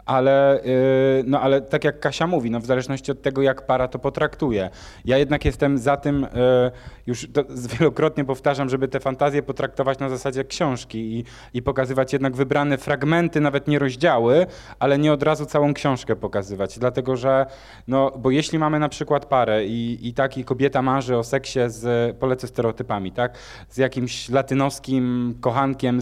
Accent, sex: native, male